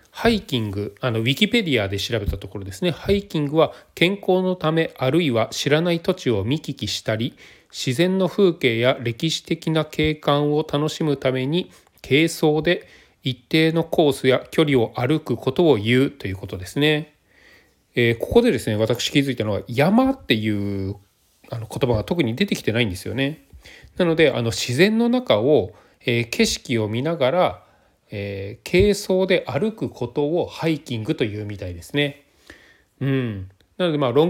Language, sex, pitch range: Japanese, male, 115-160 Hz